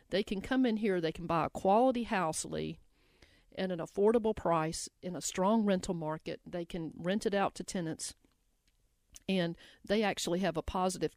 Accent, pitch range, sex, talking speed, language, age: American, 170-220 Hz, female, 185 wpm, English, 50-69